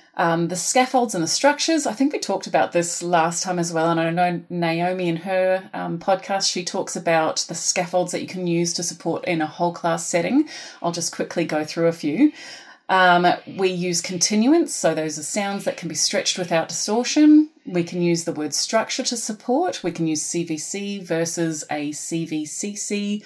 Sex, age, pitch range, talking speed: female, 30-49, 165-205 Hz, 195 wpm